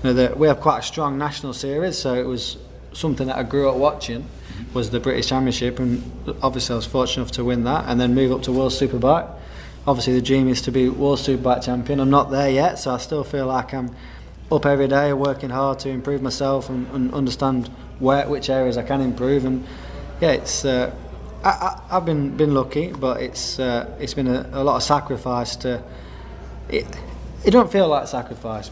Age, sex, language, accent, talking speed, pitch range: 20-39, male, English, British, 215 wpm, 115-135 Hz